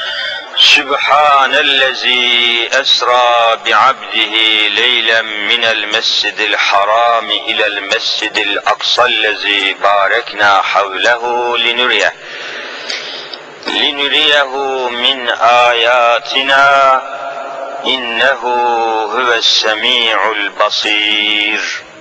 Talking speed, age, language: 60 wpm, 50-69, Turkish